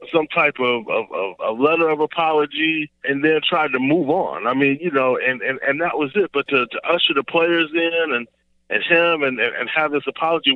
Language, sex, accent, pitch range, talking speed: English, male, American, 125-160 Hz, 225 wpm